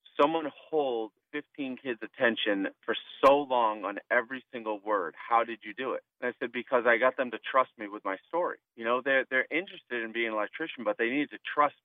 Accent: American